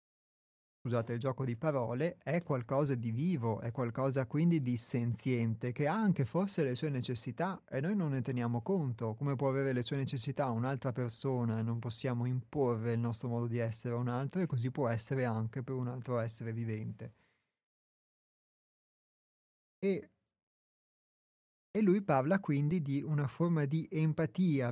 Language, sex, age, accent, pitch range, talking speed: Italian, male, 30-49, native, 120-150 Hz, 160 wpm